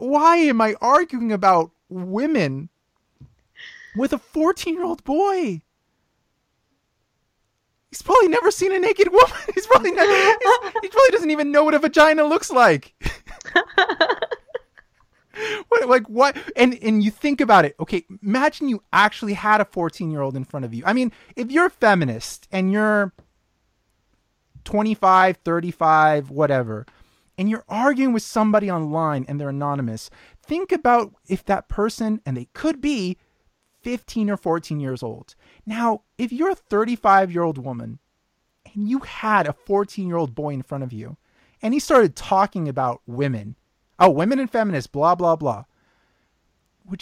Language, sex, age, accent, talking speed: English, male, 20-39, American, 145 wpm